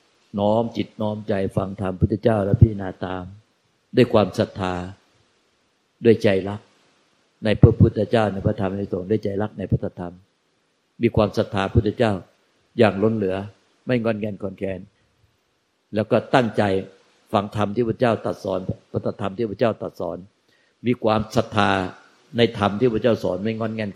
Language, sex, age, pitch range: Thai, male, 60-79, 95-115 Hz